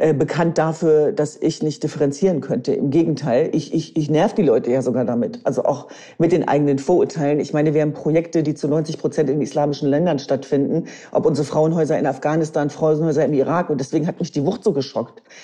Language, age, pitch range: German, 40-59, 150-185 Hz